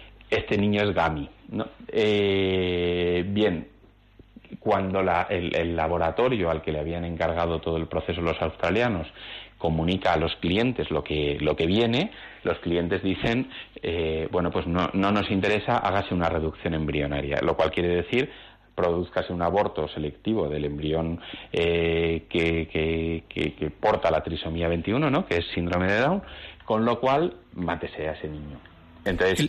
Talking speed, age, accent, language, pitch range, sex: 160 wpm, 30-49, Spanish, Spanish, 80-105 Hz, male